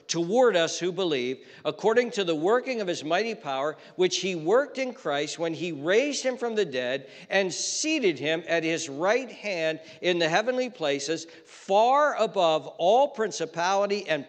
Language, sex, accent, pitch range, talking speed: English, male, American, 165-235 Hz, 170 wpm